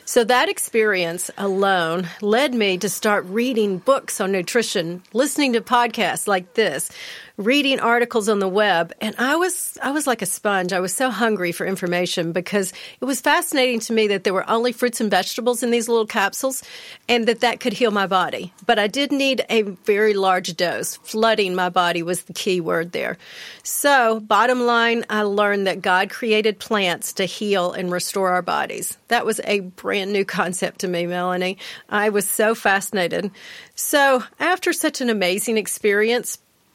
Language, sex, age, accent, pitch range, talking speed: English, female, 40-59, American, 185-235 Hz, 180 wpm